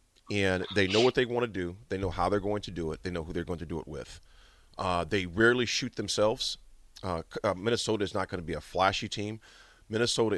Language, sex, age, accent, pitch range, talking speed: English, male, 40-59, American, 95-125 Hz, 245 wpm